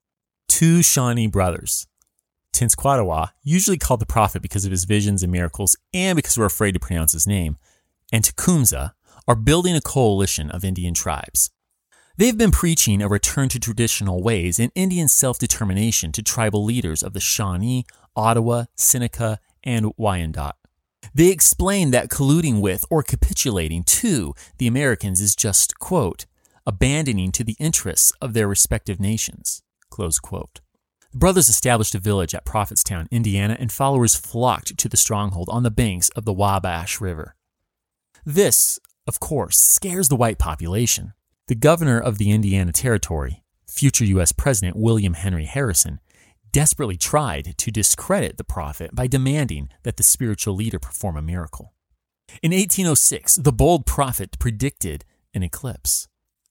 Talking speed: 145 wpm